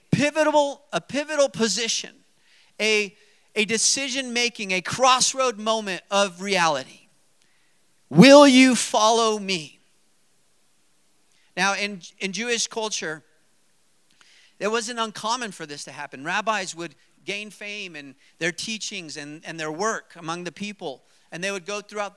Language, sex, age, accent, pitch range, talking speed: English, male, 40-59, American, 175-215 Hz, 125 wpm